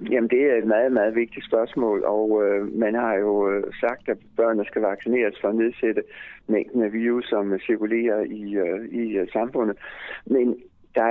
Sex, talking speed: male, 160 wpm